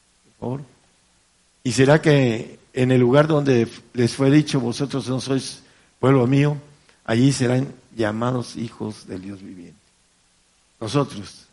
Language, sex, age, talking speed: Spanish, male, 60-79, 120 wpm